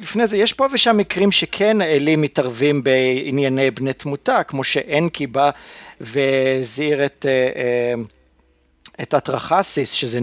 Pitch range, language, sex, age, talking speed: 130-155 Hz, Hebrew, male, 50-69, 115 wpm